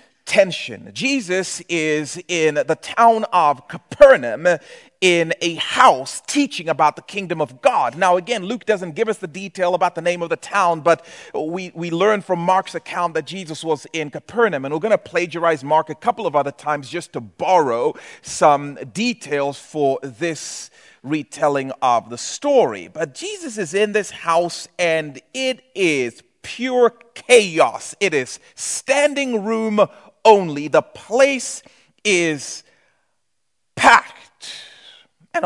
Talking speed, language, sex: 145 wpm, English, male